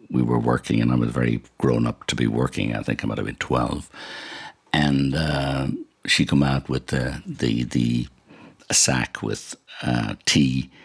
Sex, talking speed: male, 185 wpm